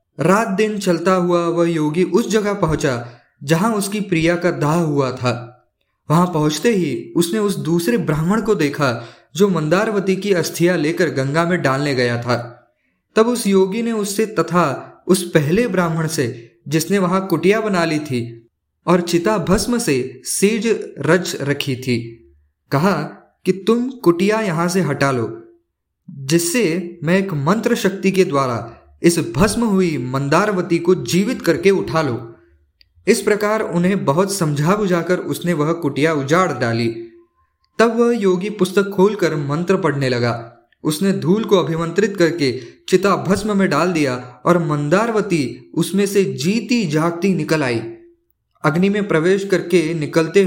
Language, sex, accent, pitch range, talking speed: Hindi, male, native, 140-195 Hz, 150 wpm